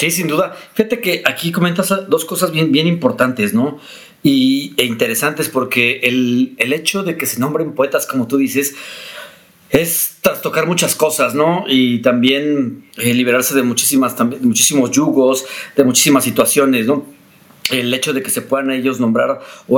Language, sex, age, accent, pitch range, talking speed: Spanish, male, 40-59, Mexican, 125-155 Hz, 160 wpm